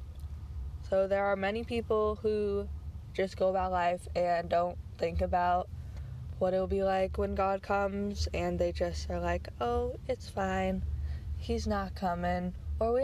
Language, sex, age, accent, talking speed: English, female, 10-29, American, 155 wpm